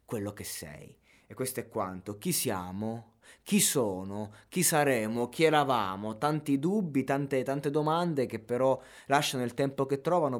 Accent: native